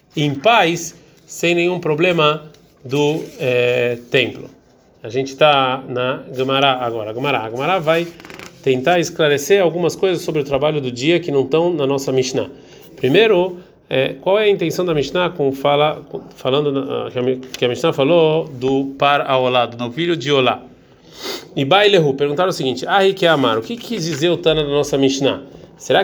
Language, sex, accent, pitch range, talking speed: Portuguese, male, Brazilian, 135-170 Hz, 155 wpm